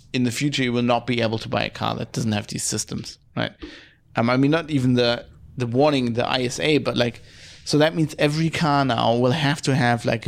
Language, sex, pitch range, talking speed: English, male, 125-155 Hz, 240 wpm